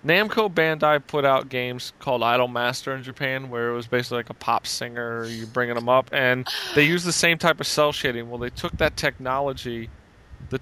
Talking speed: 210 wpm